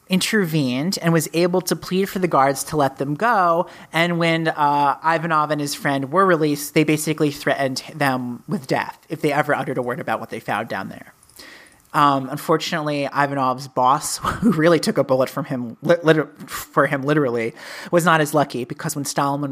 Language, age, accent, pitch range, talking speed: English, 30-49, American, 140-170 Hz, 190 wpm